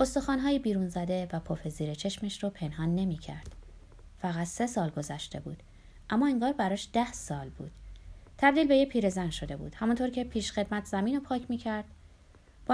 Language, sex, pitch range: Persian, female, 160-235 Hz